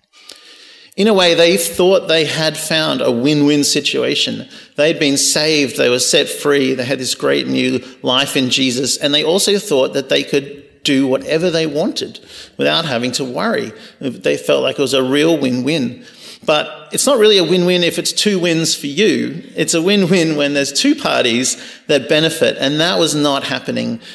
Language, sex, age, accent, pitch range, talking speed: English, male, 40-59, Australian, 135-185 Hz, 185 wpm